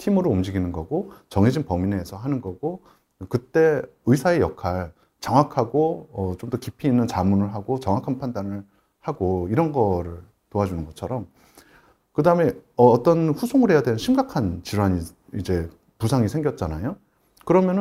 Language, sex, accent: Korean, male, native